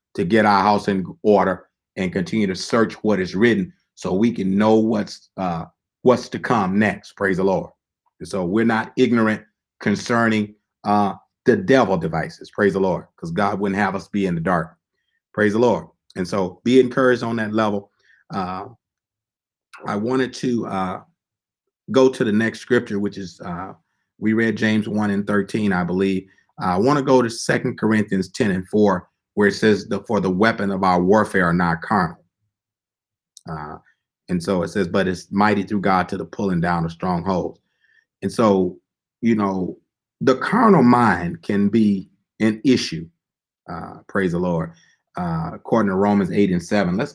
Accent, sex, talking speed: American, male, 180 wpm